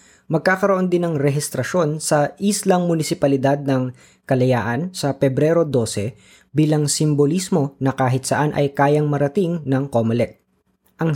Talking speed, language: 125 wpm, Filipino